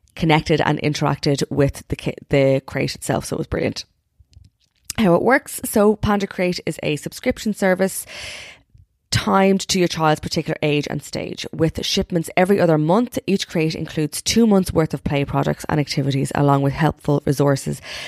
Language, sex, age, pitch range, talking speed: English, female, 20-39, 140-165 Hz, 170 wpm